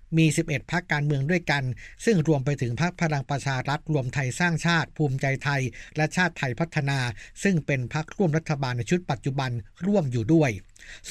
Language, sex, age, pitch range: Thai, male, 60-79, 135-165 Hz